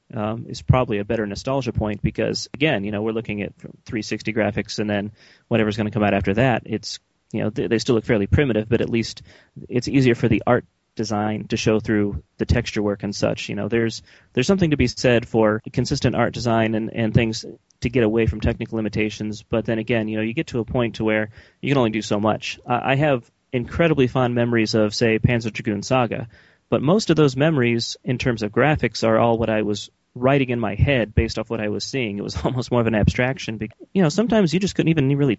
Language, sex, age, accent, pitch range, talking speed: English, male, 30-49, American, 105-125 Hz, 235 wpm